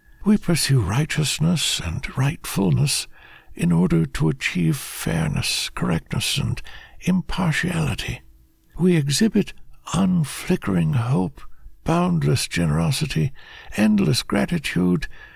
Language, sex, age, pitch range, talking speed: English, male, 60-79, 130-180 Hz, 80 wpm